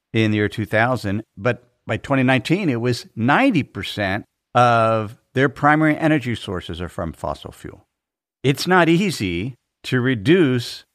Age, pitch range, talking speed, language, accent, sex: 50-69, 110-140 Hz, 130 wpm, English, American, male